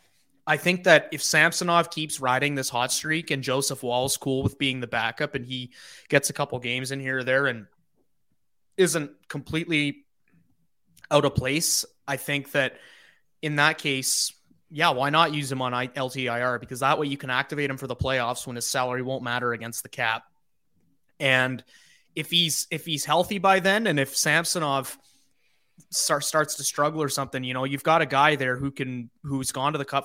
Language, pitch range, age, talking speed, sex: English, 130-155 Hz, 20-39, 190 wpm, male